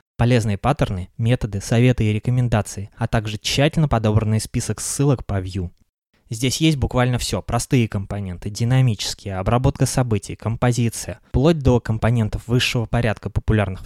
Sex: male